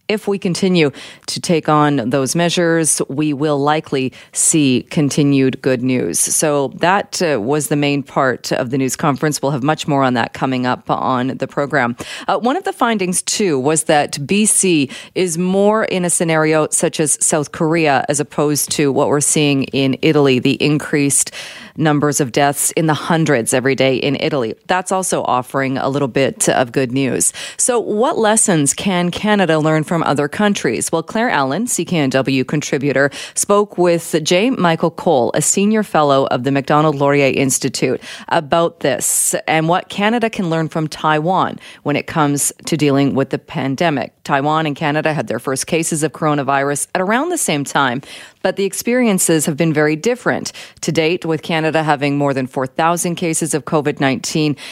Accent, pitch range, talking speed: American, 140-175 Hz, 180 wpm